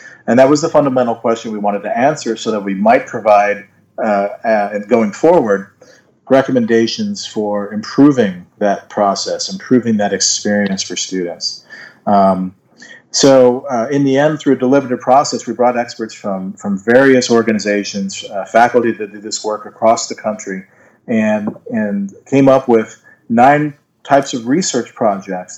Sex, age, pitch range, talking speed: male, 40-59, 100-125 Hz, 150 wpm